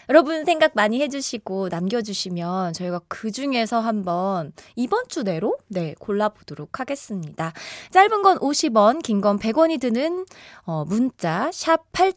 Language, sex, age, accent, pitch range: Korean, female, 20-39, native, 195-295 Hz